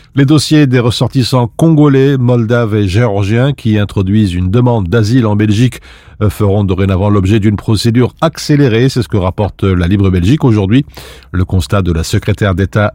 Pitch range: 95-125 Hz